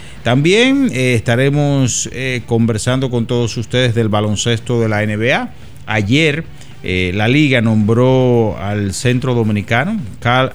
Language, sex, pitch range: Spanish, male, 110-135 Hz